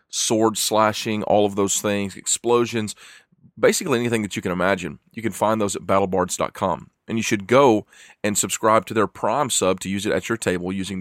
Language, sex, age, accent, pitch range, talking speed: English, male, 40-59, American, 95-115 Hz, 195 wpm